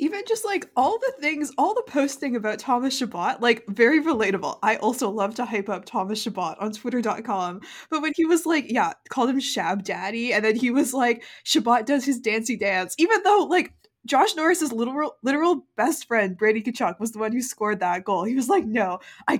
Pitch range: 215-295 Hz